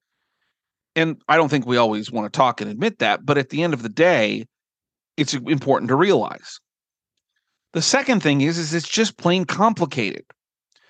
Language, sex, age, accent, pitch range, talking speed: English, male, 40-59, American, 140-185 Hz, 175 wpm